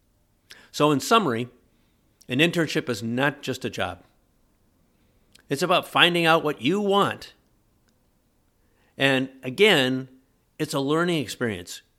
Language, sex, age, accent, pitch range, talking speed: English, male, 50-69, American, 100-135 Hz, 115 wpm